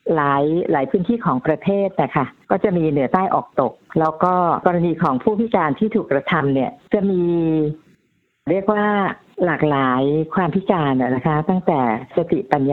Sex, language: female, Thai